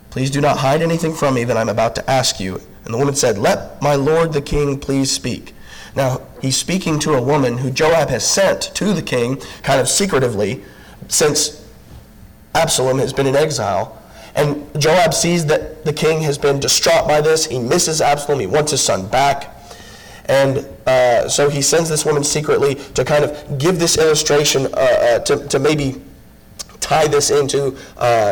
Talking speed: 185 wpm